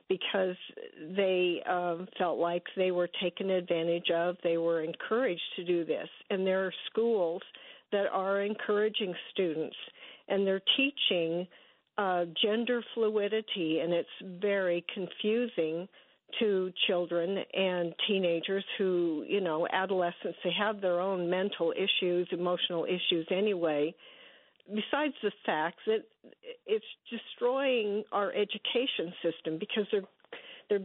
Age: 50-69